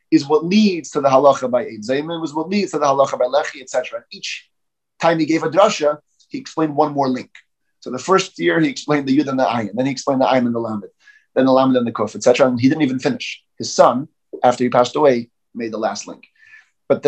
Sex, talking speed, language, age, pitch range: male, 255 wpm, English, 30-49, 110-150 Hz